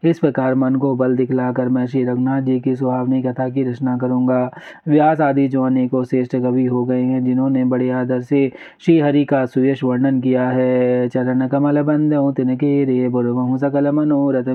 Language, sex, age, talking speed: Hindi, male, 30-49, 180 wpm